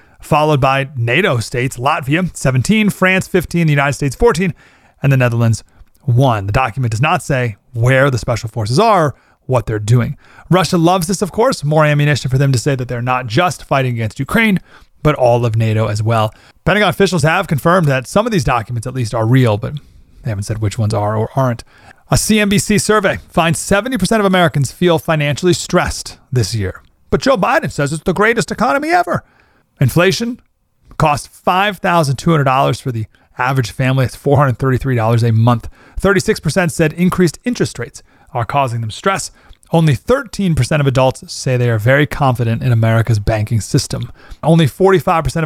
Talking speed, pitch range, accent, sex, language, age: 175 wpm, 120-170 Hz, American, male, English, 30-49